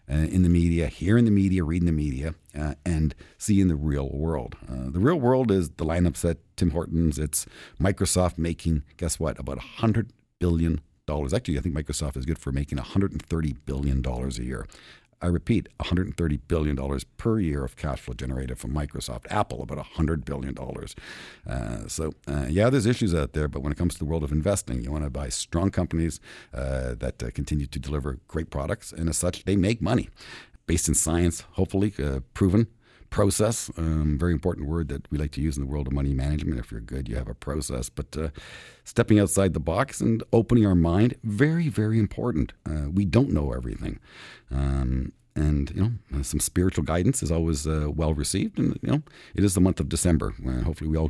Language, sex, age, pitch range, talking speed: English, male, 50-69, 70-95 Hz, 200 wpm